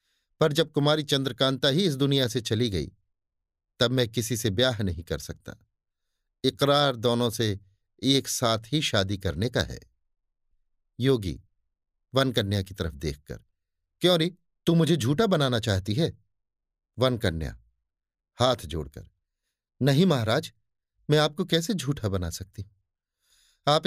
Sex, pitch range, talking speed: male, 95-145 Hz, 135 wpm